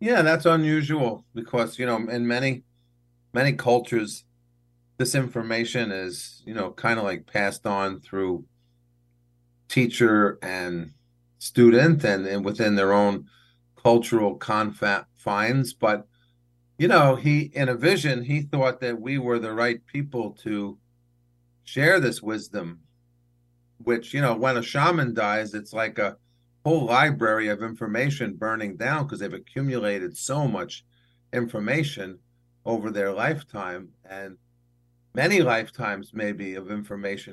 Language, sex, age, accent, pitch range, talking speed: English, male, 40-59, American, 110-125 Hz, 130 wpm